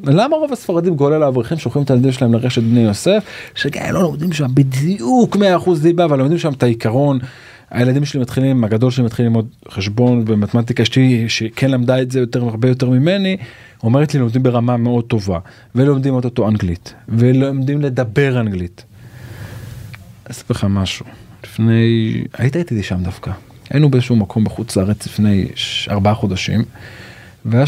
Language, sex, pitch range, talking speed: Hebrew, male, 115-145 Hz, 150 wpm